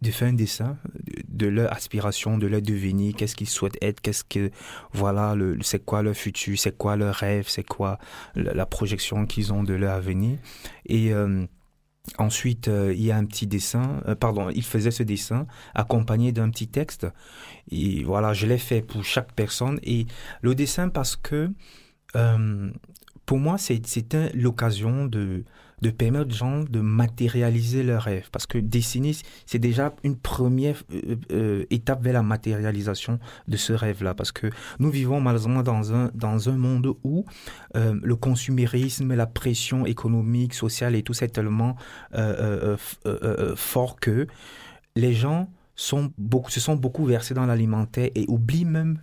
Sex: male